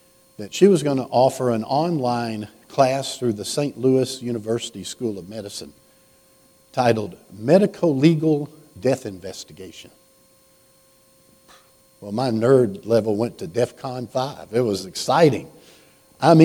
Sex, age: male, 60-79